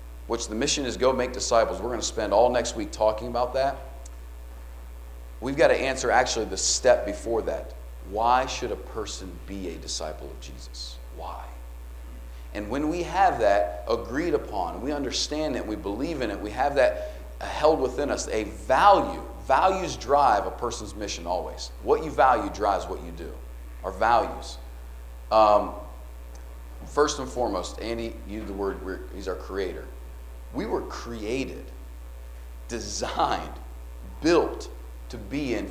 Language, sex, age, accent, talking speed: English, male, 40-59, American, 155 wpm